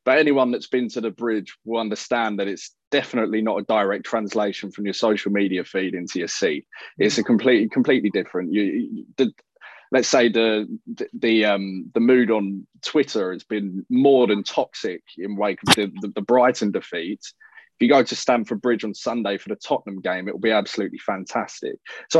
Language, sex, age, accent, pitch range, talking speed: English, male, 20-39, British, 110-165 Hz, 195 wpm